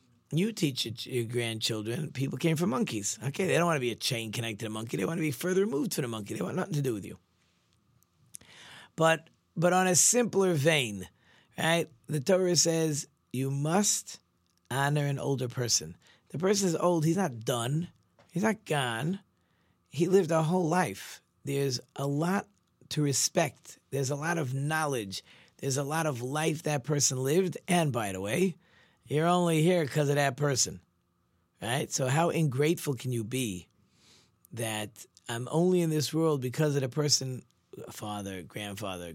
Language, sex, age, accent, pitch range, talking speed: English, male, 40-59, American, 115-170 Hz, 175 wpm